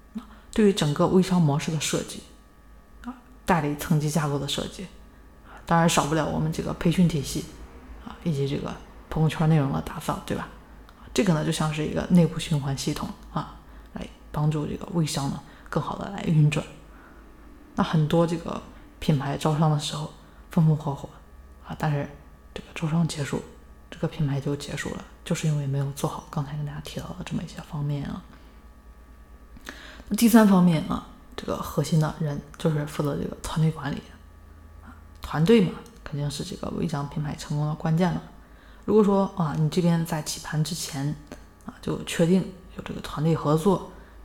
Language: Chinese